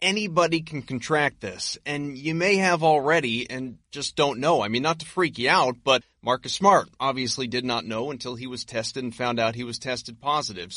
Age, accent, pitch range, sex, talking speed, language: 30-49, American, 115-160 Hz, male, 210 wpm, English